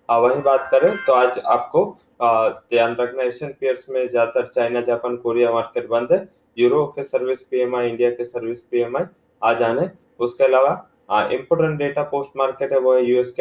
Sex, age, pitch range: male, 20-39, 120-135 Hz